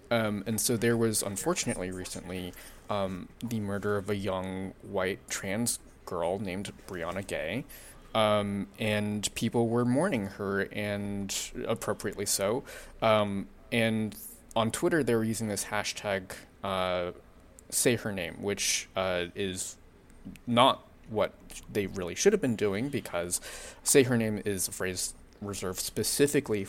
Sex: male